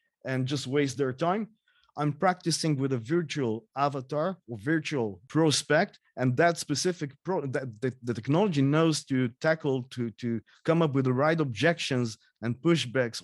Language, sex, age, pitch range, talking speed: English, male, 30-49, 125-155 Hz, 160 wpm